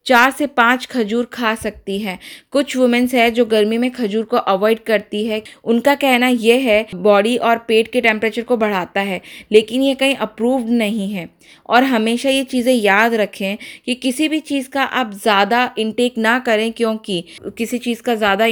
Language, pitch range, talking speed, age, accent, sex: Hindi, 210-245 Hz, 185 wpm, 20-39, native, female